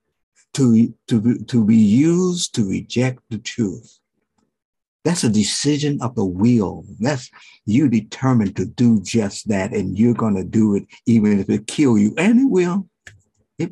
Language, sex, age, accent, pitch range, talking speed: English, male, 60-79, American, 105-145 Hz, 165 wpm